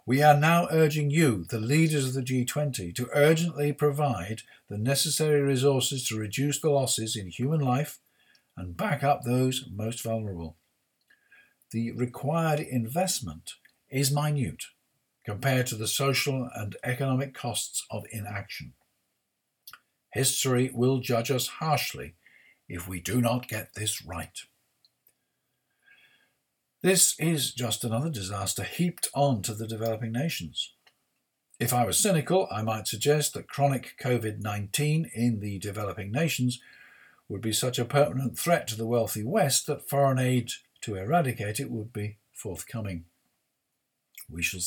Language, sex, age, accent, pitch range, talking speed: English, male, 50-69, British, 110-145 Hz, 135 wpm